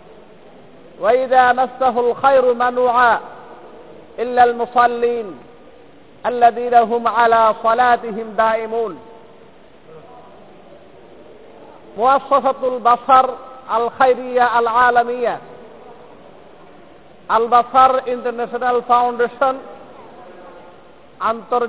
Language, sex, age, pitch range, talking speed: Bengali, male, 50-69, 235-260 Hz, 55 wpm